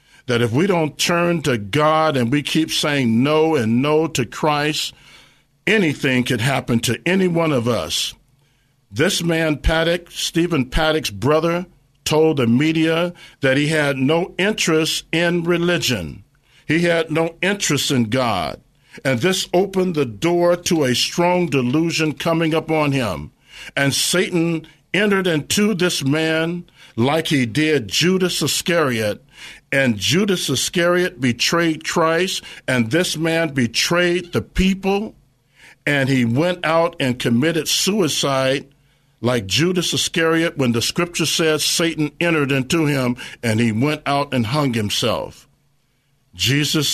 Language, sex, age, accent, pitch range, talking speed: English, male, 50-69, American, 130-165 Hz, 135 wpm